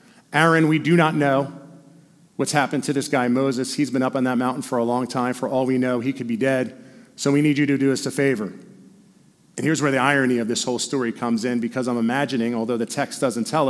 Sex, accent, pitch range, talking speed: male, American, 130-185 Hz, 250 wpm